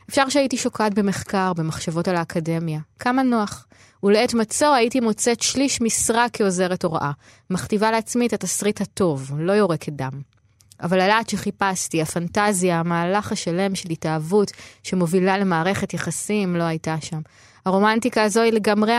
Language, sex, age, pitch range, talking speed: Hebrew, female, 20-39, 165-225 Hz, 135 wpm